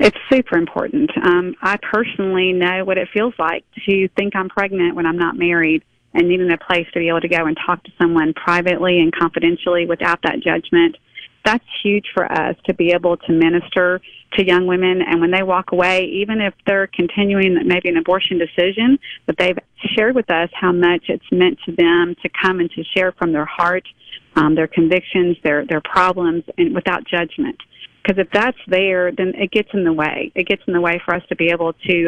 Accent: American